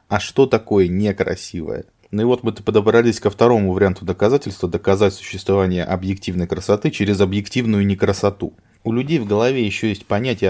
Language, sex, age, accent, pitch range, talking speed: Russian, male, 20-39, native, 95-115 Hz, 155 wpm